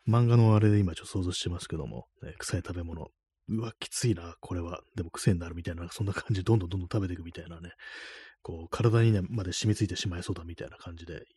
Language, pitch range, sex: Japanese, 90-115 Hz, male